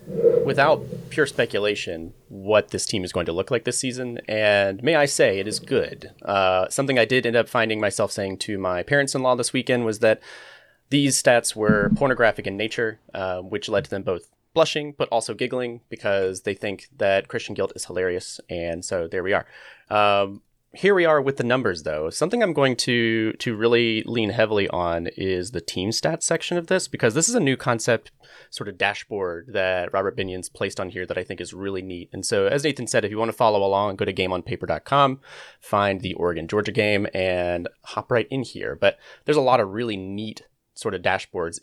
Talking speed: 210 wpm